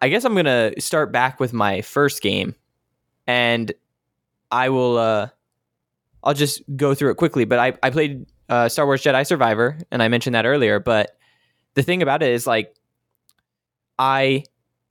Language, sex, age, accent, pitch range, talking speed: English, male, 10-29, American, 120-150 Hz, 175 wpm